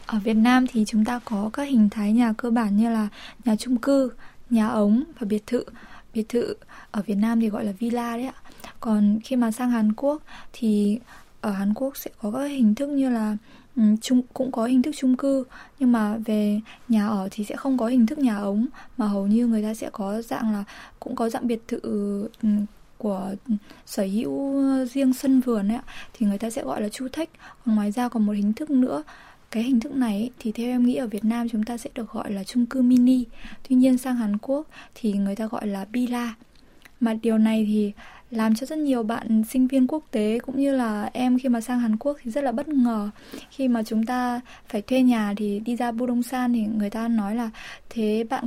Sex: female